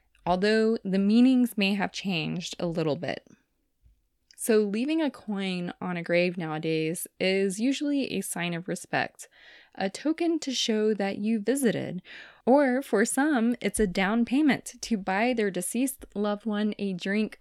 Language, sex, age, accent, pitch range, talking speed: English, female, 20-39, American, 180-230 Hz, 155 wpm